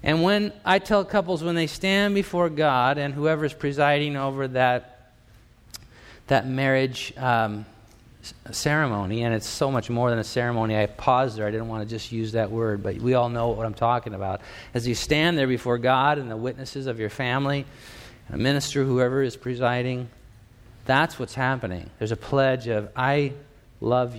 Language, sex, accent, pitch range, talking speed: English, male, American, 115-145 Hz, 180 wpm